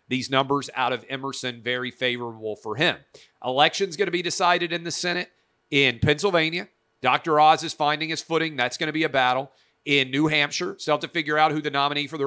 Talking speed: 215 wpm